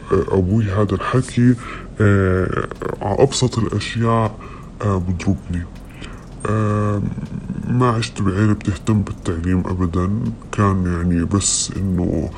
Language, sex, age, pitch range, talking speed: Arabic, female, 20-39, 95-105 Hz, 90 wpm